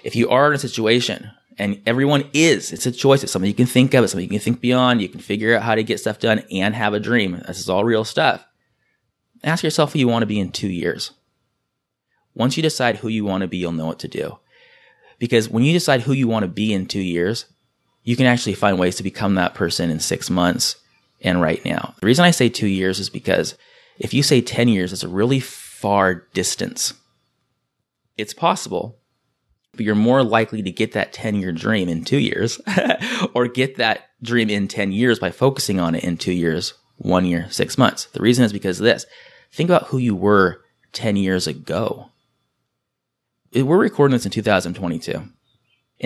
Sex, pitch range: male, 95-125 Hz